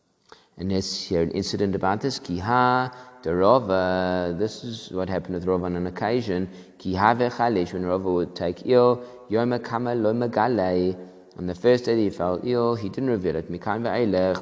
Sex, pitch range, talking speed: male, 95-120 Hz, 175 wpm